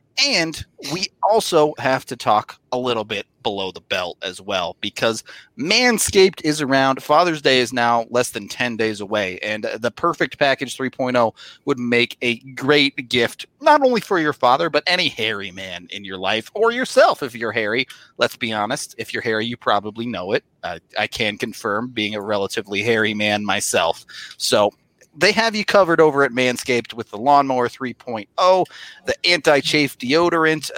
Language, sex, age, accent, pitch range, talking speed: English, male, 30-49, American, 115-160 Hz, 175 wpm